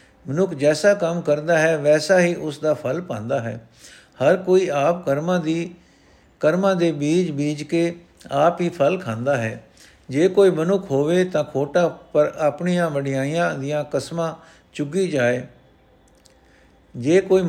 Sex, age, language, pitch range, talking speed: male, 60-79, Punjabi, 140-175 Hz, 140 wpm